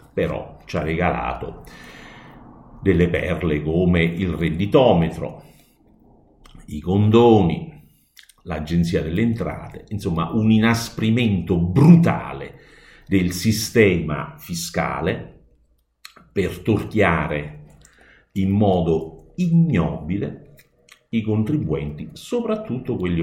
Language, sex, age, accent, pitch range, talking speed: Italian, male, 50-69, native, 80-110 Hz, 75 wpm